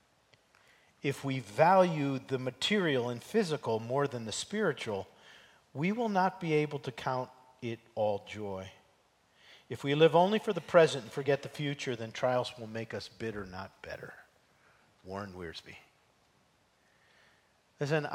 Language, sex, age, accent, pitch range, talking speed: English, male, 50-69, American, 120-155 Hz, 140 wpm